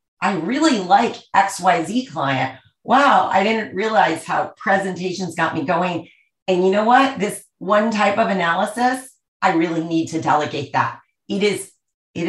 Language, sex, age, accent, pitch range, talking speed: English, female, 40-59, American, 160-210 Hz, 165 wpm